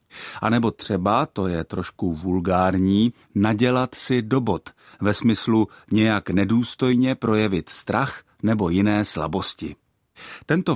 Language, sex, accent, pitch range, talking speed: Czech, male, native, 95-125 Hz, 110 wpm